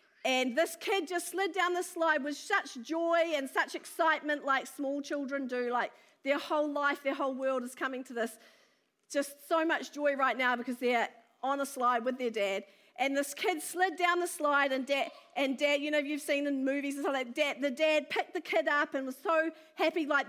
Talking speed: 220 wpm